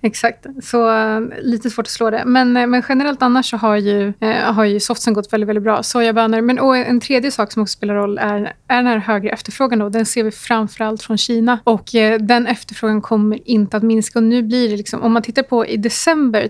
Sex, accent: female, native